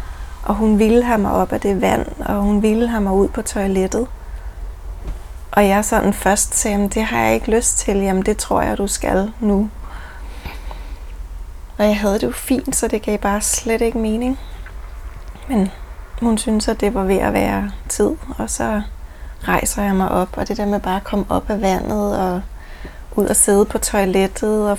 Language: Danish